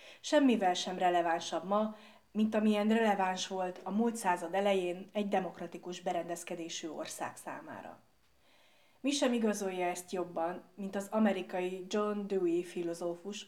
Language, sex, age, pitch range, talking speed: Hungarian, female, 30-49, 175-215 Hz, 125 wpm